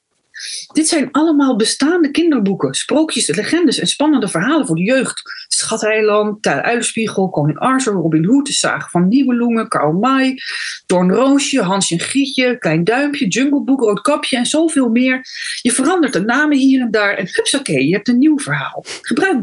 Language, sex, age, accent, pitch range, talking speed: Dutch, female, 40-59, Dutch, 190-305 Hz, 170 wpm